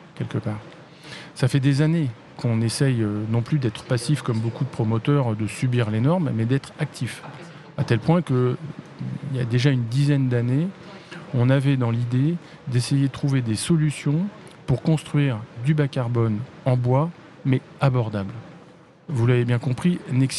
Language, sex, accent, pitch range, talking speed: French, male, French, 125-160 Hz, 165 wpm